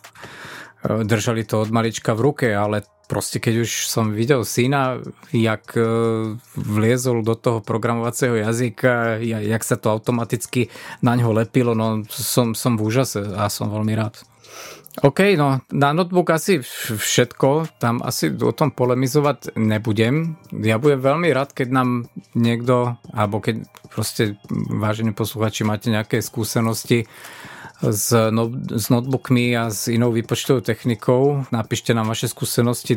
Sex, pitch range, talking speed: male, 110-135 Hz, 135 wpm